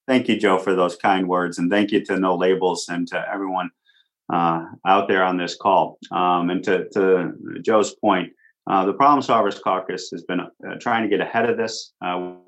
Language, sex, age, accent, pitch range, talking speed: English, male, 40-59, American, 90-105 Hz, 205 wpm